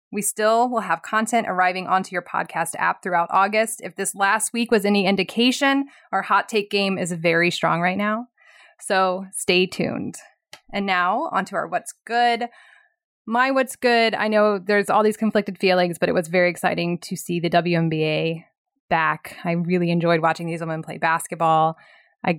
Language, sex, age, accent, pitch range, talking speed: English, female, 20-39, American, 180-225 Hz, 175 wpm